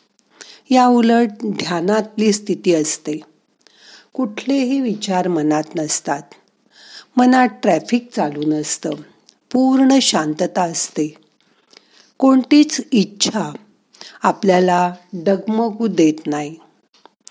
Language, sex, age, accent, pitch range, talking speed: Marathi, female, 50-69, native, 175-230 Hz, 75 wpm